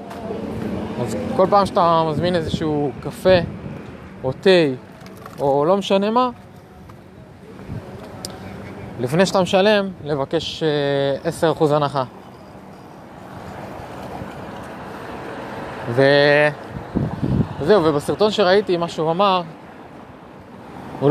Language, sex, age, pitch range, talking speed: Hebrew, male, 20-39, 135-170 Hz, 70 wpm